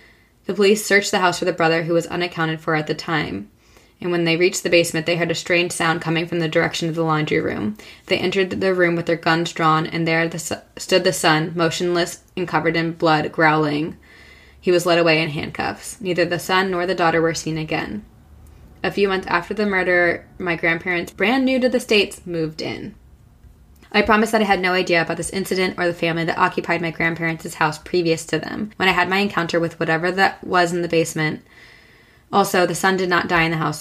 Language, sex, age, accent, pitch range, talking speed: English, female, 20-39, American, 160-185 Hz, 220 wpm